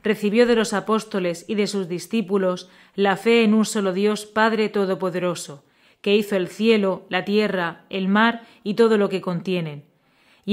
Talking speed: 170 wpm